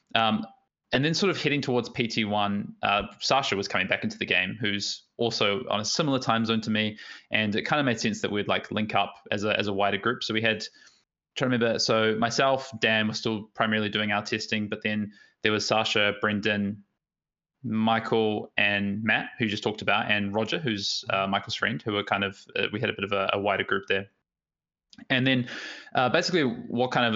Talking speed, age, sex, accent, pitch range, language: 215 wpm, 20-39, male, Australian, 105-120 Hz, English